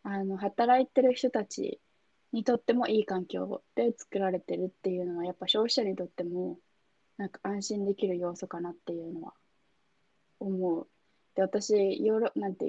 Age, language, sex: 20-39, Japanese, female